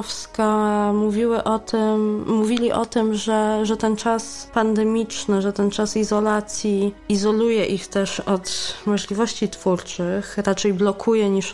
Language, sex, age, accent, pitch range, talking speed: Polish, female, 20-39, native, 190-220 Hz, 125 wpm